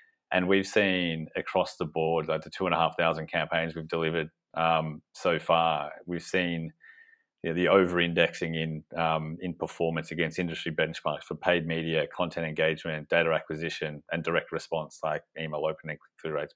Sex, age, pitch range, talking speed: male, 30-49, 80-90 Hz, 145 wpm